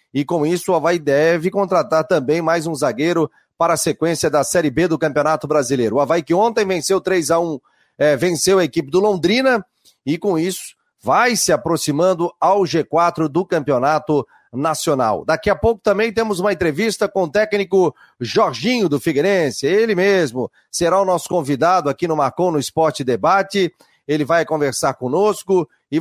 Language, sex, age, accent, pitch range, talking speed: Portuguese, male, 40-59, Brazilian, 150-190 Hz, 170 wpm